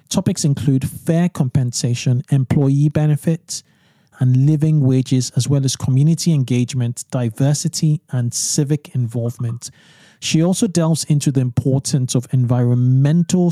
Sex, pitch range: male, 125-150 Hz